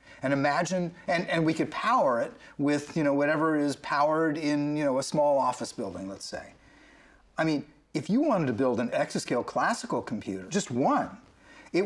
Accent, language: American, English